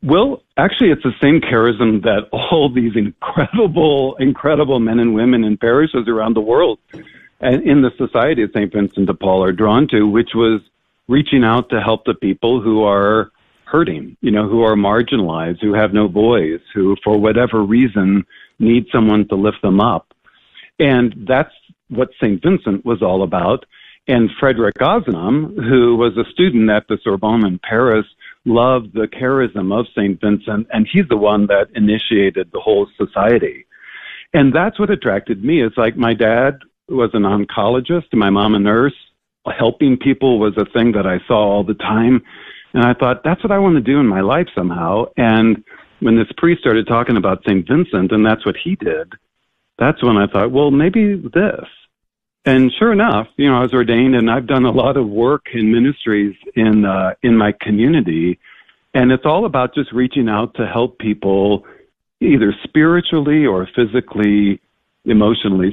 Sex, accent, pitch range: male, American, 105-135 Hz